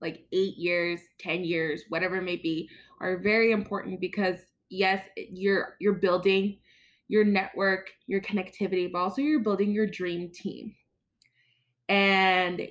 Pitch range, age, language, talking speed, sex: 180-240 Hz, 20-39, English, 135 wpm, female